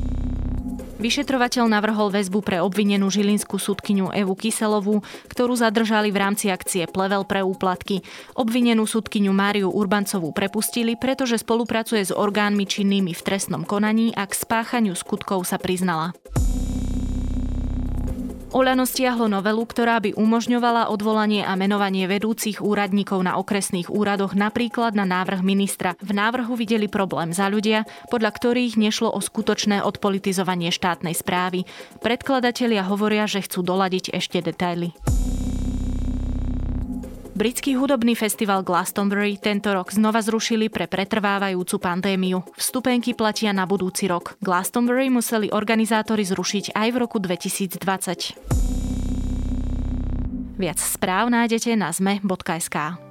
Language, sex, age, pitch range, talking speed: Slovak, female, 20-39, 180-220 Hz, 120 wpm